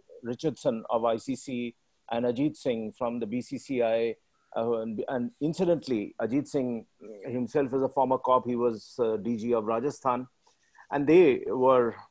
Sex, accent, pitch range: male, Indian, 120-135 Hz